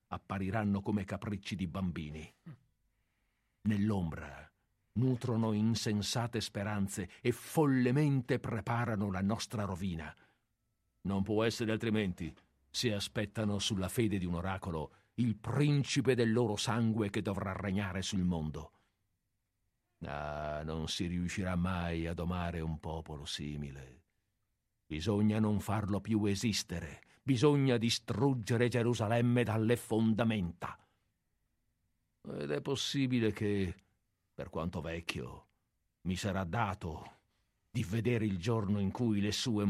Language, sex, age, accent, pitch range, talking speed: Italian, male, 50-69, native, 95-120 Hz, 110 wpm